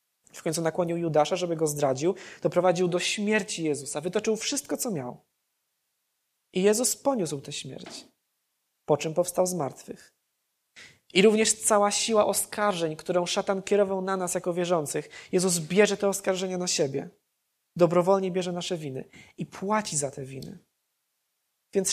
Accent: native